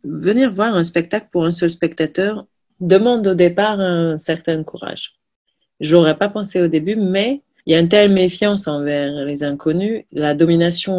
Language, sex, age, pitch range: French, female, 30-49, 145-175 Hz